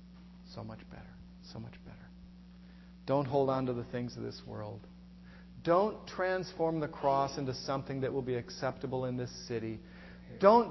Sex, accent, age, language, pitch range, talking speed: male, American, 40-59, English, 110-180 Hz, 165 wpm